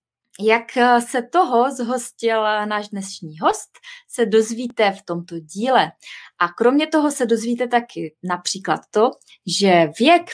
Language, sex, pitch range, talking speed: Czech, female, 195-245 Hz, 130 wpm